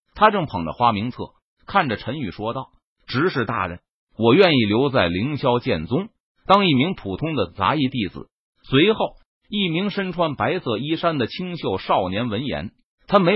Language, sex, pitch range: Chinese, male, 120-180 Hz